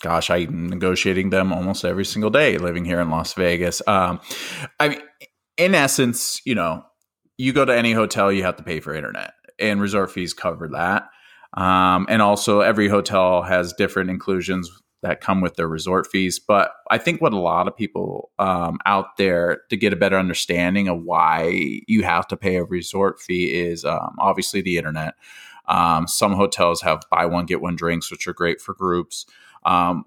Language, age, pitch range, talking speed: English, 30-49, 90-100 Hz, 190 wpm